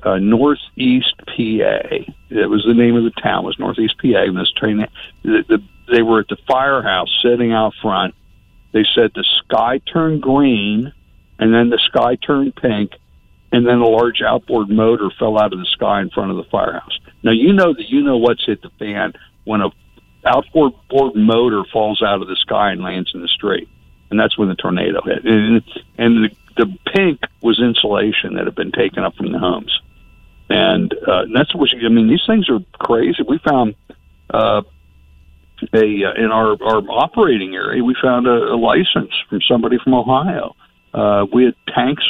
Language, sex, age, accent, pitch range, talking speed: English, male, 60-79, American, 105-135 Hz, 190 wpm